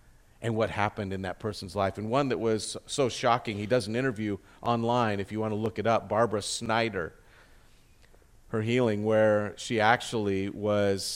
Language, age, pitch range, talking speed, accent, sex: English, 50-69, 105-120 Hz, 175 wpm, American, male